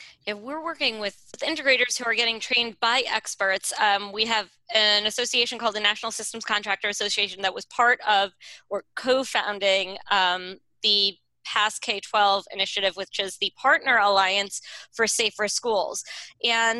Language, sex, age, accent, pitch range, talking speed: English, female, 20-39, American, 205-240 Hz, 150 wpm